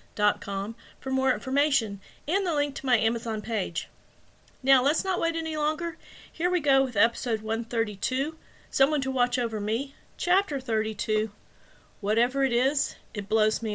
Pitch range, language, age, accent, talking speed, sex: 190-260 Hz, English, 40-59, American, 160 wpm, female